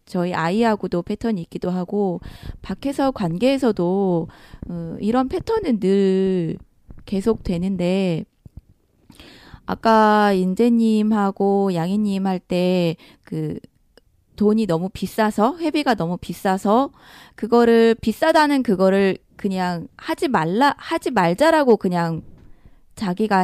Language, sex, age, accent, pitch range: Korean, female, 20-39, native, 180-240 Hz